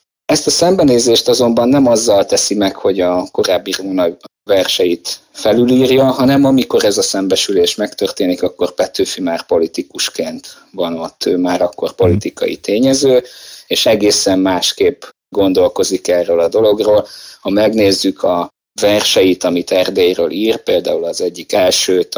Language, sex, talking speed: Hungarian, male, 135 wpm